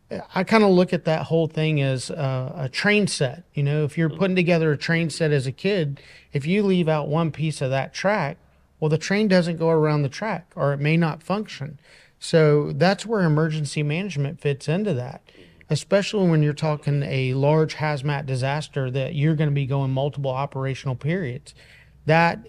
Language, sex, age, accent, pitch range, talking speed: English, male, 40-59, American, 140-170 Hz, 190 wpm